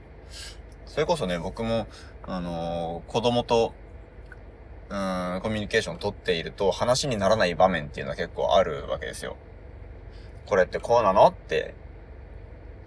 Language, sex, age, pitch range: Japanese, male, 20-39, 85-110 Hz